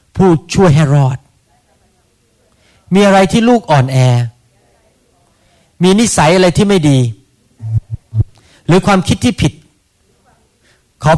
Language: Thai